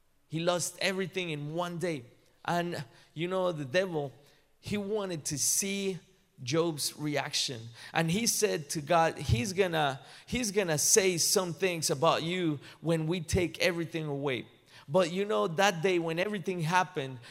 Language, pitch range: English, 150-185 Hz